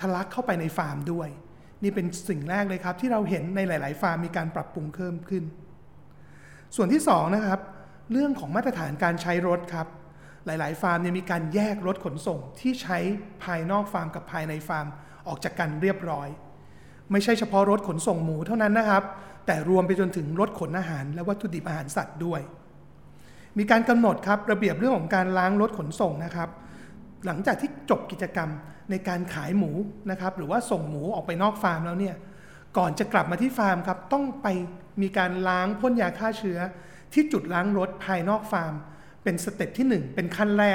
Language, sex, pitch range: Thai, male, 170-205 Hz